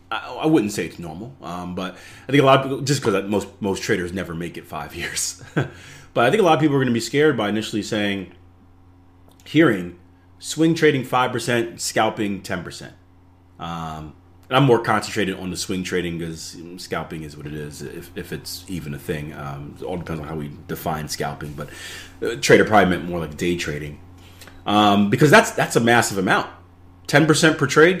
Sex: male